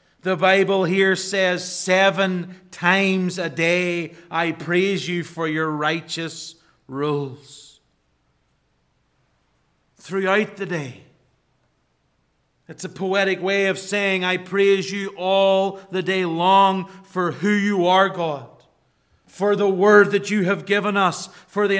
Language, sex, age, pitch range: English, male, 40-59, 165-195 Hz